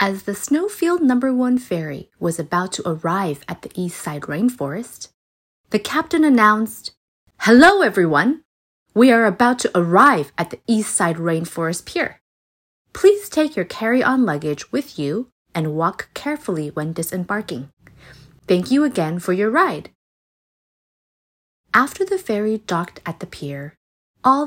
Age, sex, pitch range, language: 30-49, female, 165-260 Hz, Chinese